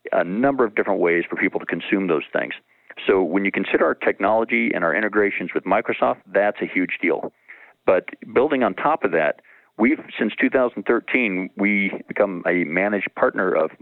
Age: 50-69